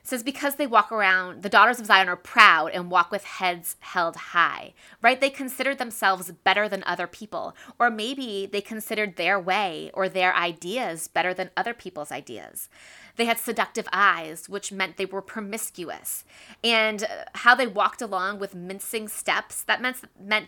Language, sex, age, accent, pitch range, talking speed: English, female, 20-39, American, 185-230 Hz, 175 wpm